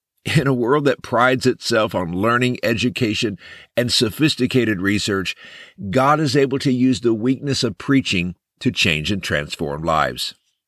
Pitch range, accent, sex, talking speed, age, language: 110-150 Hz, American, male, 145 wpm, 60-79, English